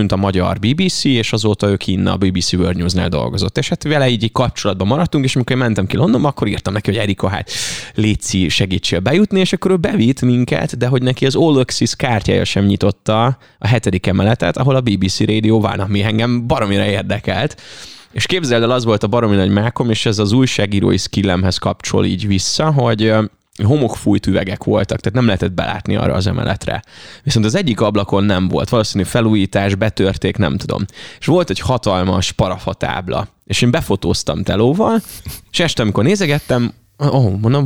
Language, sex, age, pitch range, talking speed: Hungarian, male, 20-39, 100-130 Hz, 180 wpm